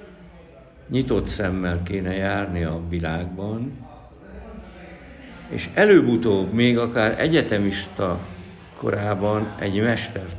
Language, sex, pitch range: Hungarian, male, 90-110 Hz